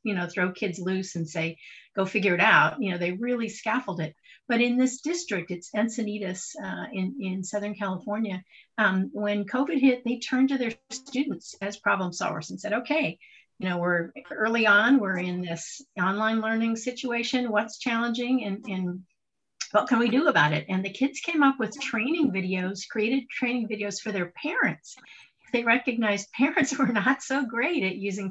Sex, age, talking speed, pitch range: female, 50-69, 185 wpm, 190-245 Hz